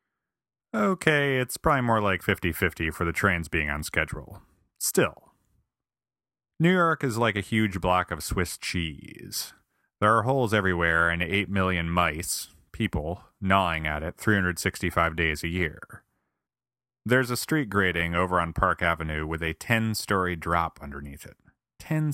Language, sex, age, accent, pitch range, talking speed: English, male, 30-49, American, 80-105 Hz, 145 wpm